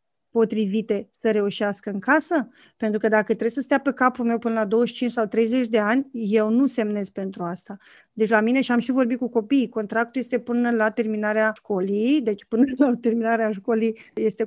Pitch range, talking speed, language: 220-280 Hz, 195 wpm, Romanian